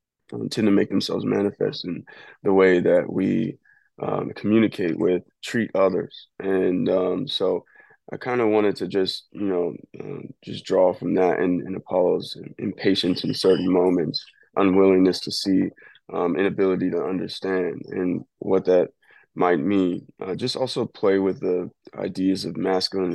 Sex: male